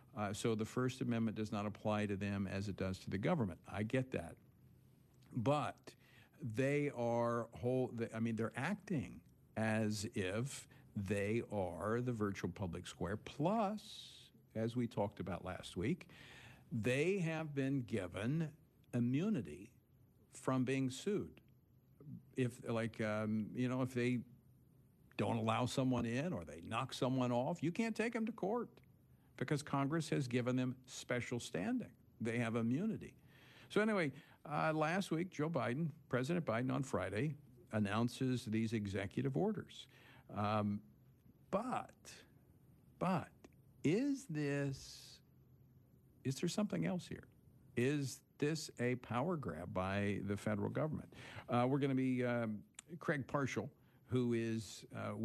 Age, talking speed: 50-69, 140 wpm